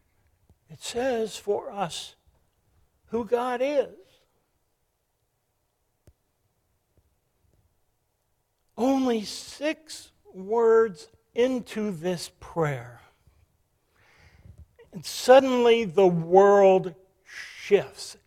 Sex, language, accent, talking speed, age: male, English, American, 60 wpm, 60-79